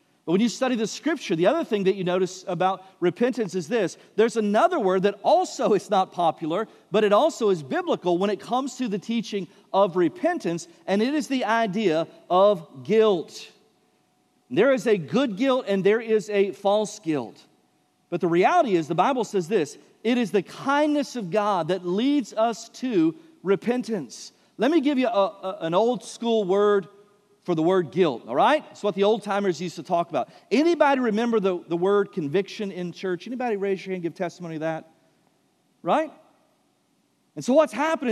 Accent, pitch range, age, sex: American, 195-265 Hz, 40-59, male